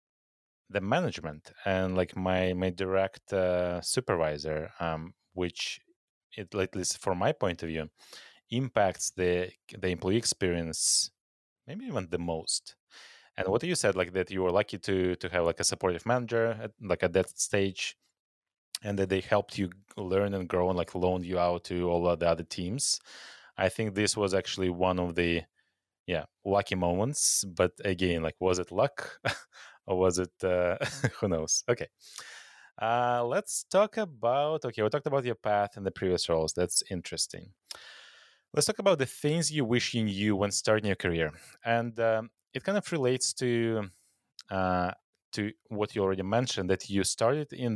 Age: 20-39